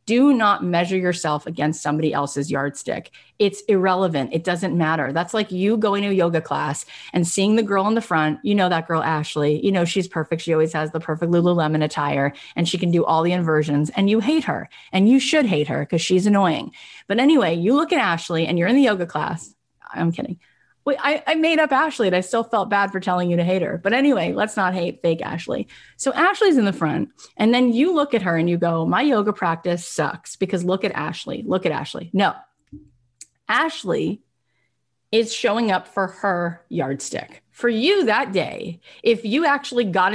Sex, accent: female, American